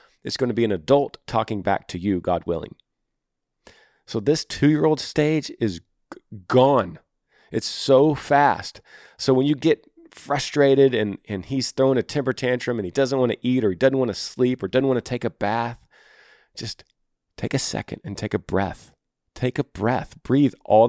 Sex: male